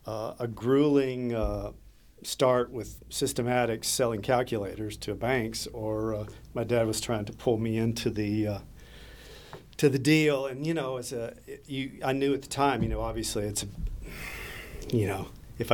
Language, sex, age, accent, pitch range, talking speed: English, male, 50-69, American, 105-125 Hz, 175 wpm